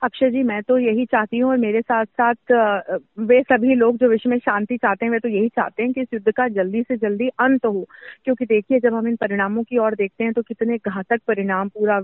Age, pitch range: 30-49, 210-260 Hz